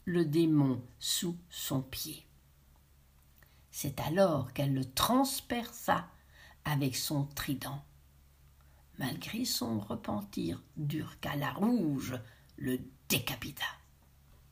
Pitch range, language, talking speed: 130-215 Hz, French, 85 wpm